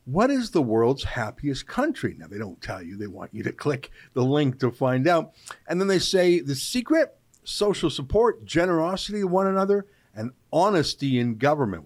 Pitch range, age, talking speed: 120-160 Hz, 50-69, 185 wpm